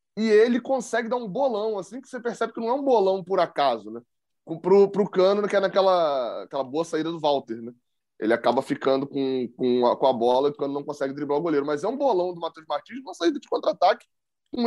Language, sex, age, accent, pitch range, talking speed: Portuguese, male, 20-39, Brazilian, 155-220 Hz, 240 wpm